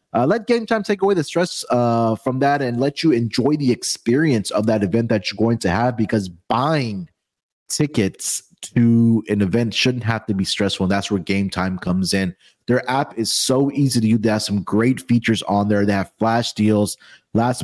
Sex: male